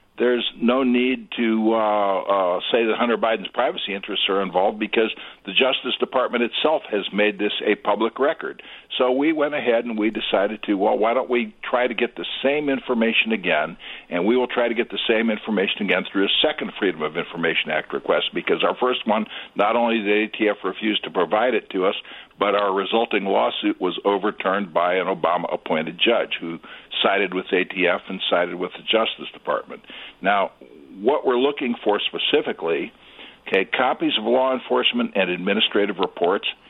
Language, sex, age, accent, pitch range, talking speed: English, male, 60-79, American, 105-120 Hz, 180 wpm